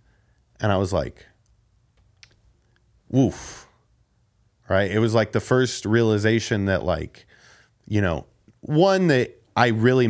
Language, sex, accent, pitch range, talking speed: English, male, American, 105-120 Hz, 120 wpm